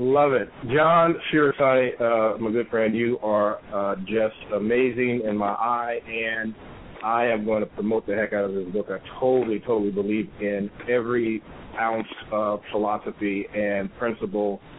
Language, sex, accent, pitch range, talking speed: English, male, American, 105-120 Hz, 155 wpm